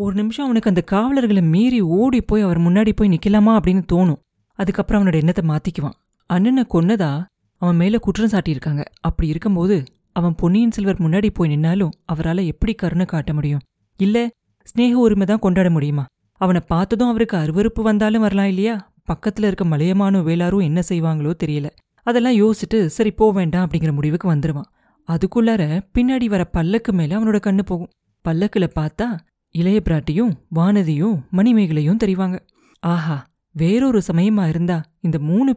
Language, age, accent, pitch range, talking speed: Tamil, 30-49, native, 165-210 Hz, 140 wpm